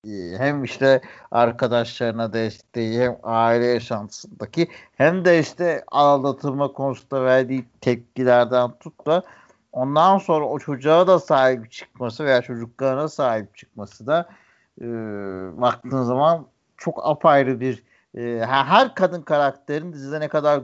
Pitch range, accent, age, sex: 115-155 Hz, native, 60-79, male